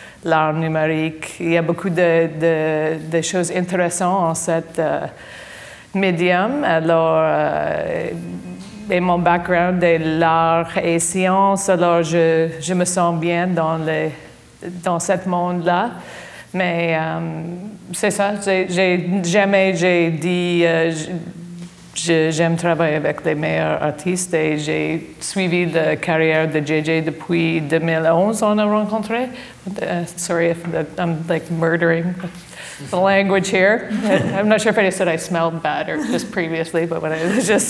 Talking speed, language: 135 wpm, French